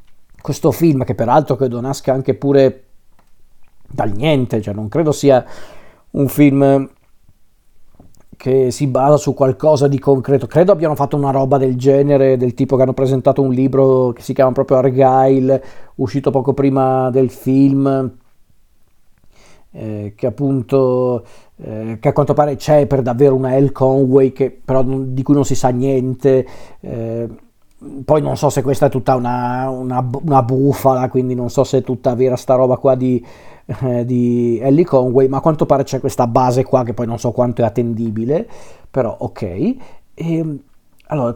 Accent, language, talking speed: native, Italian, 165 wpm